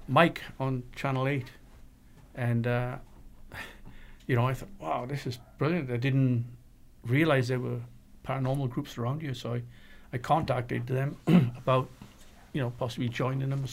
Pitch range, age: 120-135 Hz, 60-79